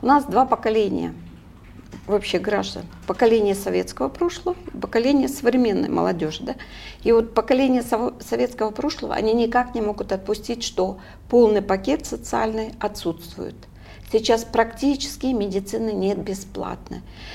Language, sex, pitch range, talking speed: Russian, female, 195-250 Hz, 110 wpm